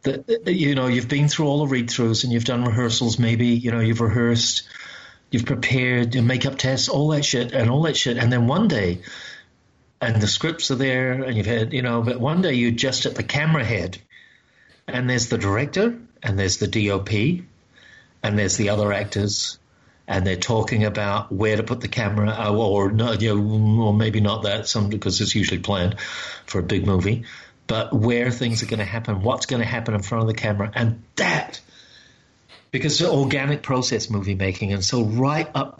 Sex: male